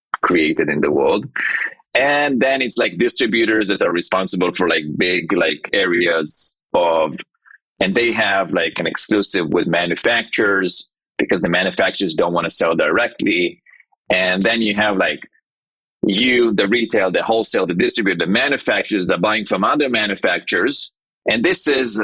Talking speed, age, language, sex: 150 wpm, 30-49, English, male